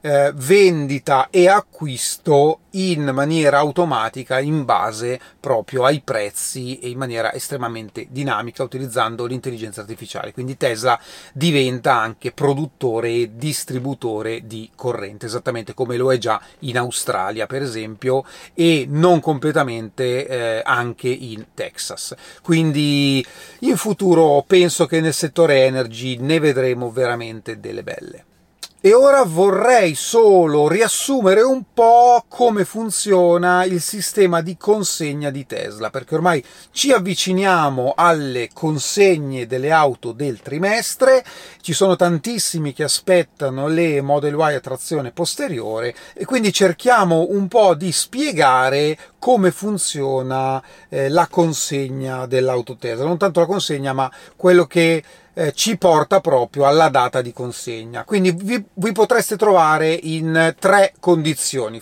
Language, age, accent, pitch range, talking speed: Italian, 30-49, native, 130-180 Hz, 120 wpm